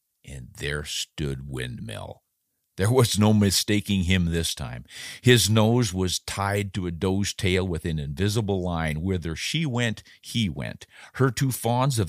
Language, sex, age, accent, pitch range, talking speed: English, male, 50-69, American, 85-115 Hz, 160 wpm